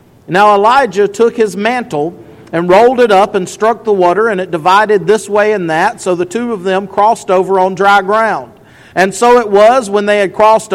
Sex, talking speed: male, 210 wpm